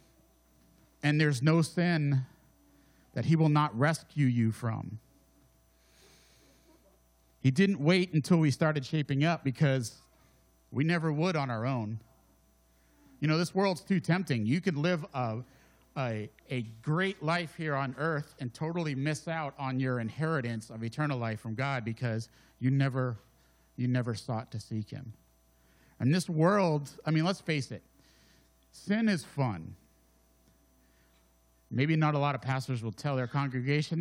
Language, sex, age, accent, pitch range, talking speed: English, male, 50-69, American, 105-155 Hz, 150 wpm